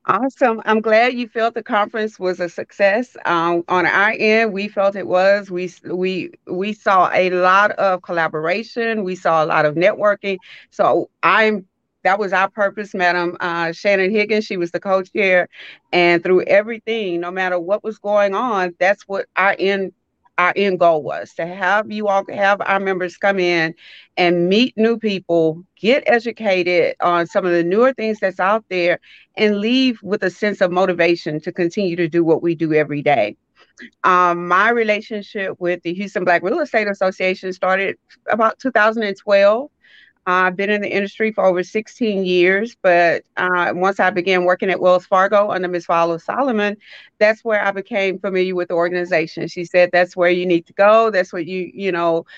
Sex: female